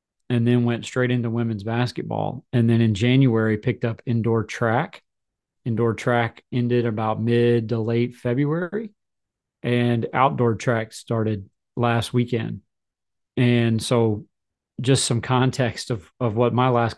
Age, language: 30-49, English